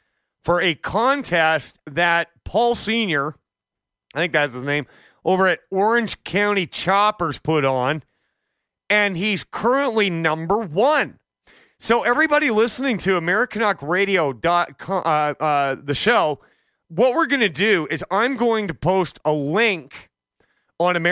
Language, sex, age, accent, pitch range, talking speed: English, male, 30-49, American, 155-205 Hz, 125 wpm